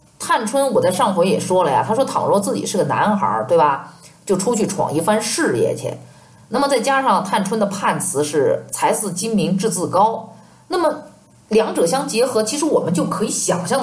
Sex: female